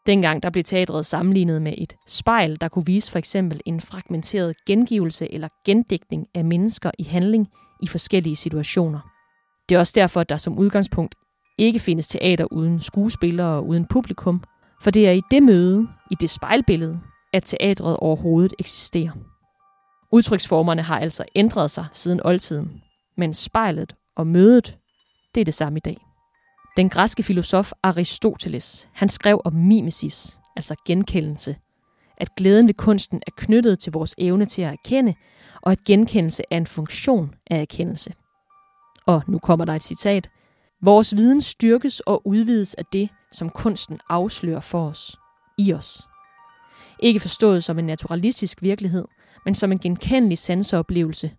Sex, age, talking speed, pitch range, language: female, 30-49, 155 wpm, 165-205 Hz, Danish